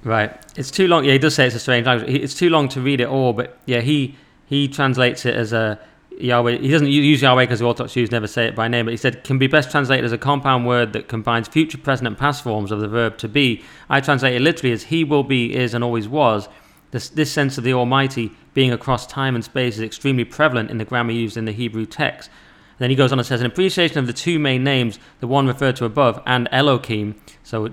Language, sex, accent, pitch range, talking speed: English, male, British, 115-135 Hz, 260 wpm